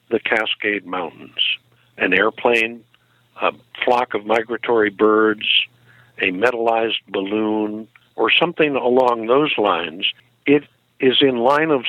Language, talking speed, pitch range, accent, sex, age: English, 115 wpm, 110-140 Hz, American, male, 60-79